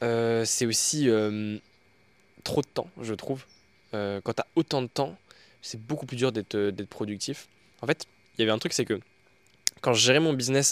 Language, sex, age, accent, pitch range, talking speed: French, male, 20-39, French, 110-140 Hz, 205 wpm